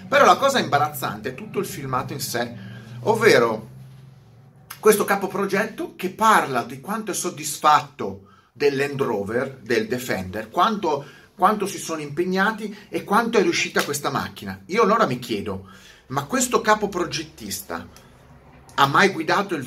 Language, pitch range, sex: Italian, 140-220 Hz, male